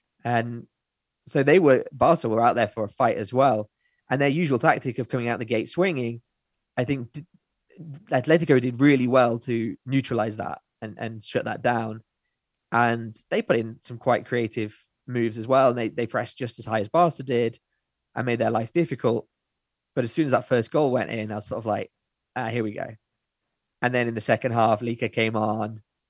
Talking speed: 205 wpm